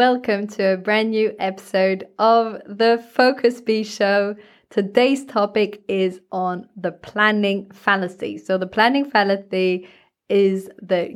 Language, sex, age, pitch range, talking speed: English, female, 20-39, 185-225 Hz, 130 wpm